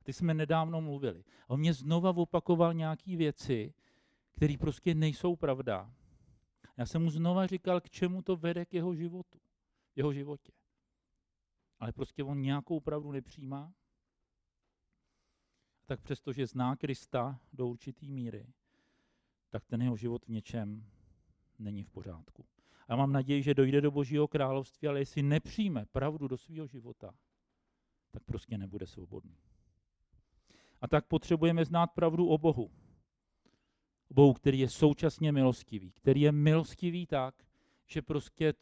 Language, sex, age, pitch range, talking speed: Czech, male, 50-69, 115-155 Hz, 140 wpm